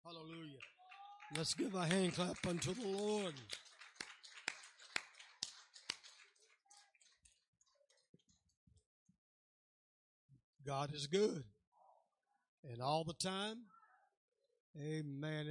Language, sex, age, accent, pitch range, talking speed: English, male, 60-79, American, 140-175 Hz, 65 wpm